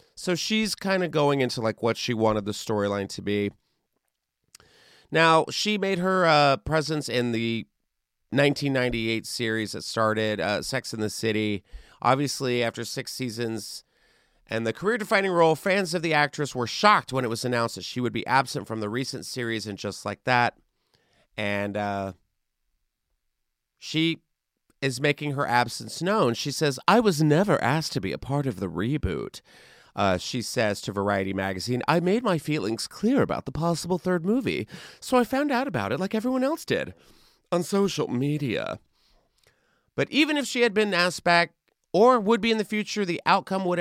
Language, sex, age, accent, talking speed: English, male, 40-59, American, 175 wpm